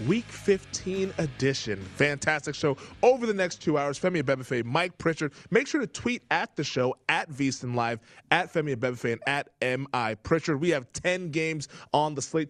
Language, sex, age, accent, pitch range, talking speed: English, male, 20-39, American, 135-180 Hz, 180 wpm